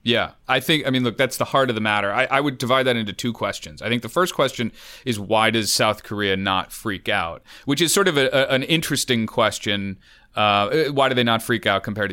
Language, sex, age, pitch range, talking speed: English, male, 30-49, 105-135 Hz, 250 wpm